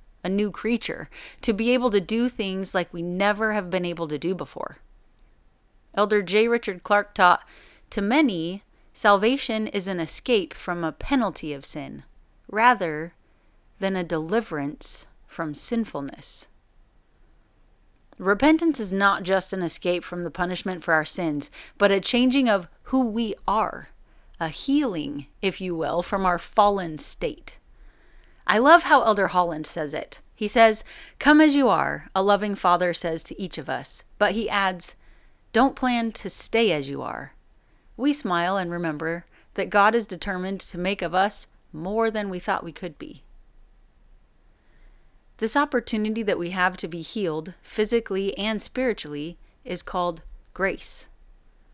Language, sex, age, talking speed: English, female, 30-49, 155 wpm